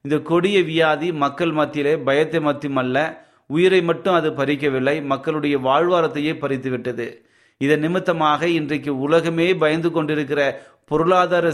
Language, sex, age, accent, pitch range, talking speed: Tamil, male, 30-49, native, 140-165 Hz, 100 wpm